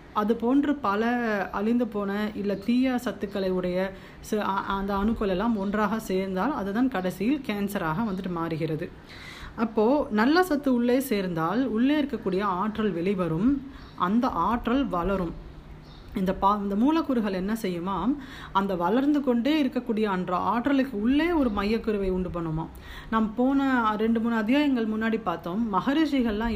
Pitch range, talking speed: 185-245 Hz, 125 wpm